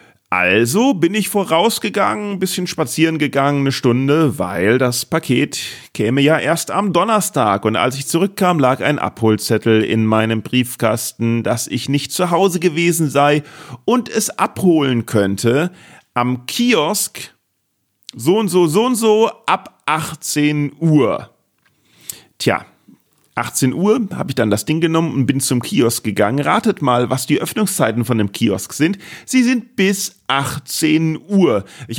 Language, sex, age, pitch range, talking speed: German, male, 40-59, 125-190 Hz, 150 wpm